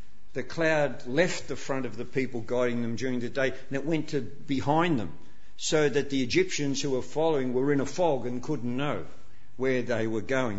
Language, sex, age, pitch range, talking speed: English, male, 50-69, 125-155 Hz, 210 wpm